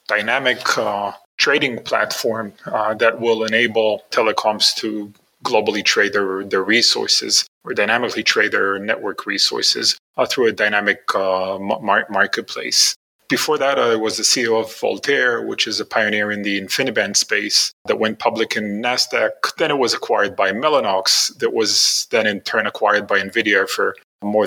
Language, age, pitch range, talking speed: English, 30-49, 95-110 Hz, 160 wpm